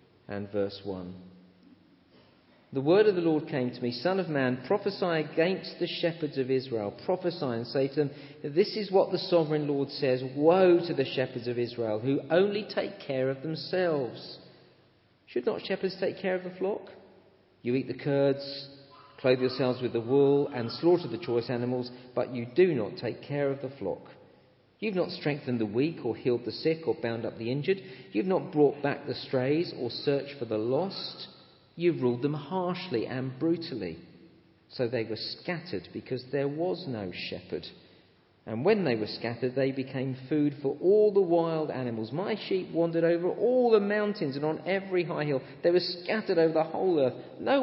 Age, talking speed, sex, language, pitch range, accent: 40-59, 185 wpm, male, English, 125-175 Hz, British